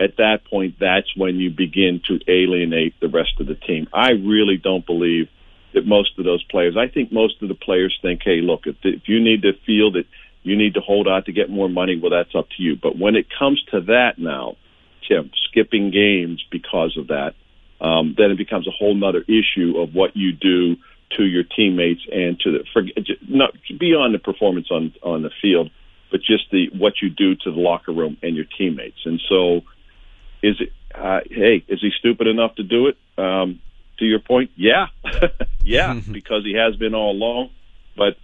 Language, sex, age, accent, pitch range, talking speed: English, male, 50-69, American, 90-105 Hz, 205 wpm